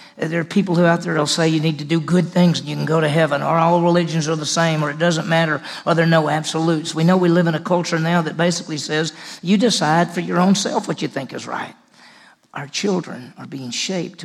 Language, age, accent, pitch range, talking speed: English, 50-69, American, 155-175 Hz, 260 wpm